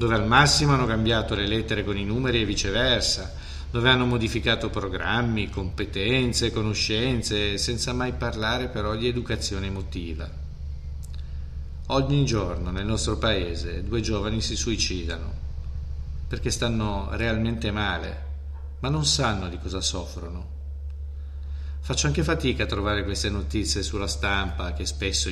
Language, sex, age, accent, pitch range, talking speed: Italian, male, 40-59, native, 70-110 Hz, 130 wpm